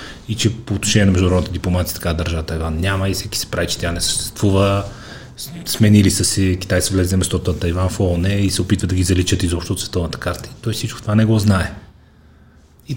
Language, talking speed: Bulgarian, 220 wpm